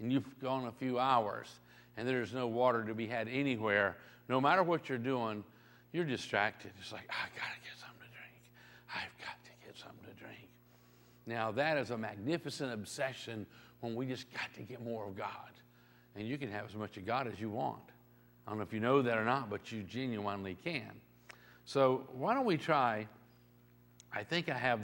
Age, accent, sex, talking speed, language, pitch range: 50-69, American, male, 205 wpm, English, 120-175 Hz